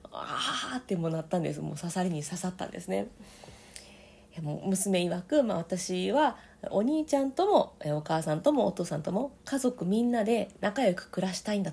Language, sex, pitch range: Japanese, female, 170-245 Hz